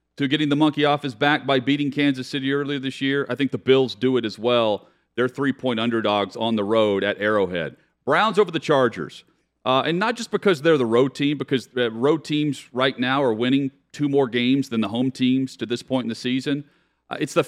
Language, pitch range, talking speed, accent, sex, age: English, 120-145 Hz, 225 wpm, American, male, 40-59